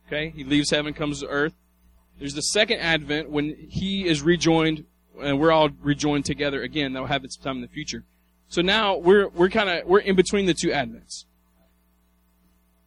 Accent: American